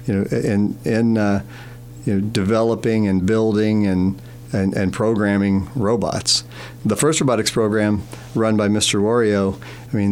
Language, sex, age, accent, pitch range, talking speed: English, male, 50-69, American, 100-120 Hz, 150 wpm